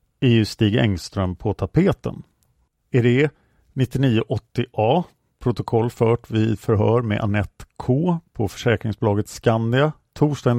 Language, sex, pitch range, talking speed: Swedish, male, 105-140 Hz, 100 wpm